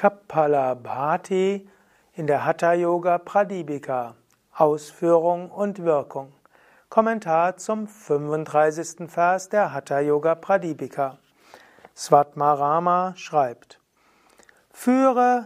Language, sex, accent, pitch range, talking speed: German, male, German, 150-195 Hz, 70 wpm